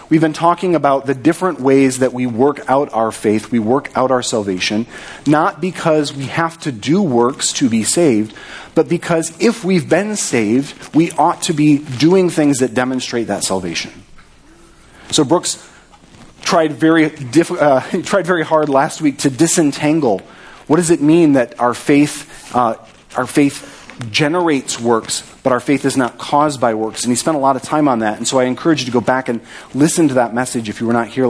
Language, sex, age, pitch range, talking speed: English, male, 40-59, 125-165 Hz, 200 wpm